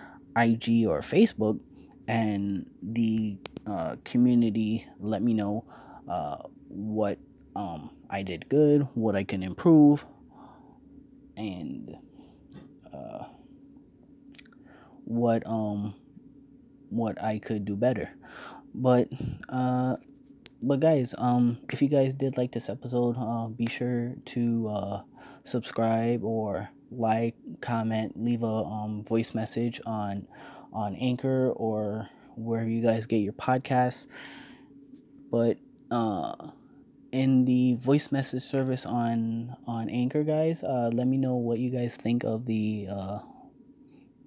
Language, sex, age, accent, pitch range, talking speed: English, male, 20-39, American, 110-135 Hz, 120 wpm